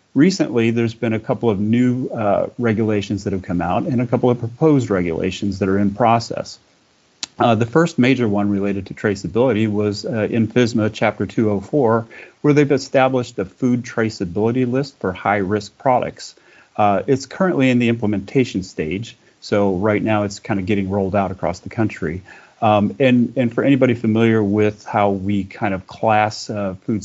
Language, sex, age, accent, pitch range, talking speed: English, male, 40-59, American, 100-120 Hz, 175 wpm